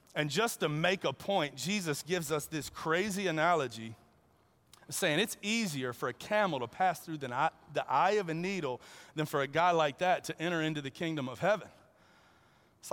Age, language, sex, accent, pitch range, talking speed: 30-49, English, male, American, 160-200 Hz, 190 wpm